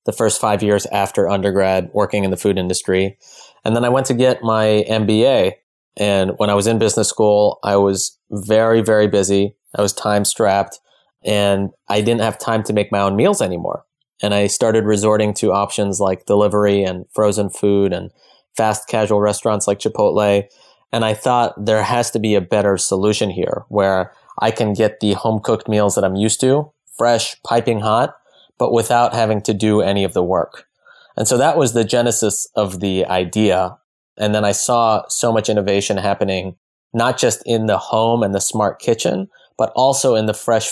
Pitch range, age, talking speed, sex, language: 100-110 Hz, 20-39, 190 wpm, male, English